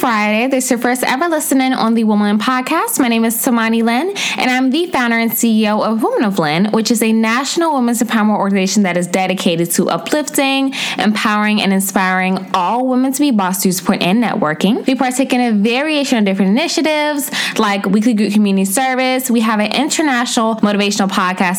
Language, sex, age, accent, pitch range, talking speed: English, female, 10-29, American, 200-260 Hz, 190 wpm